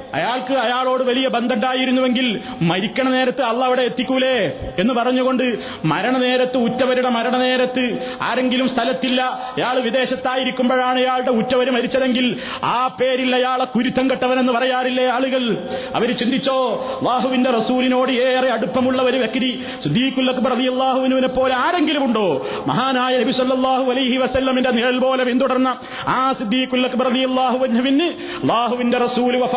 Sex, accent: male, native